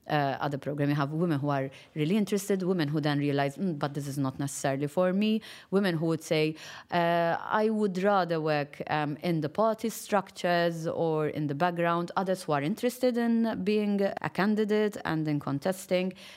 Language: English